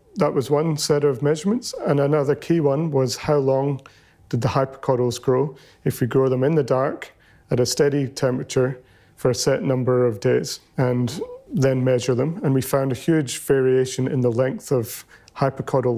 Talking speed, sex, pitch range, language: 185 wpm, male, 130-145 Hz, English